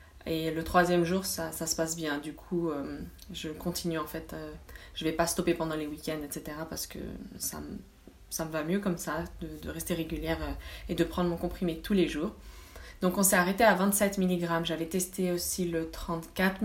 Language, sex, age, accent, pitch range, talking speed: French, female, 20-39, French, 155-185 Hz, 215 wpm